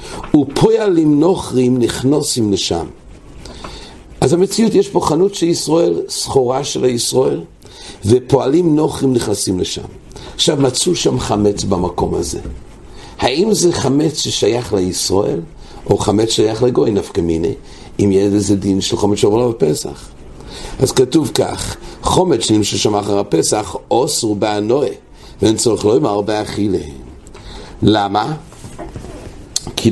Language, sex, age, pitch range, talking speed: English, male, 60-79, 100-140 Hz, 45 wpm